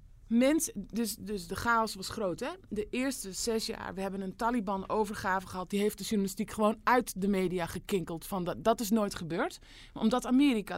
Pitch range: 190-250 Hz